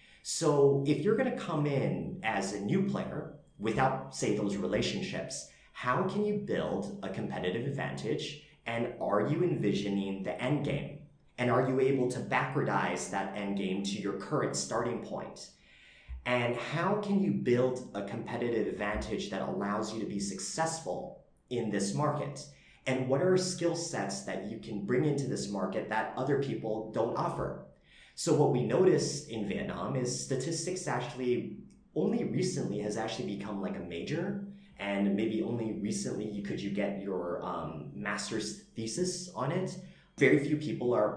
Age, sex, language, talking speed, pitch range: 30-49, male, English, 160 wpm, 105-160 Hz